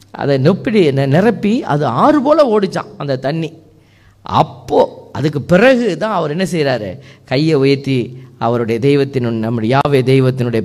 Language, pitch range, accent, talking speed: Tamil, 120-170 Hz, native, 135 wpm